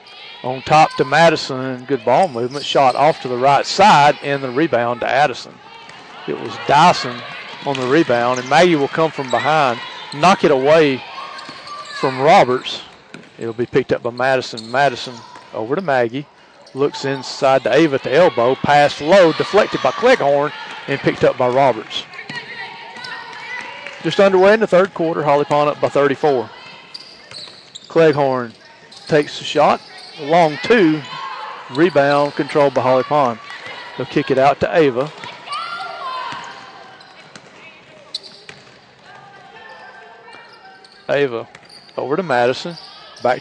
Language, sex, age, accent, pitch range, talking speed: English, male, 40-59, American, 130-165 Hz, 130 wpm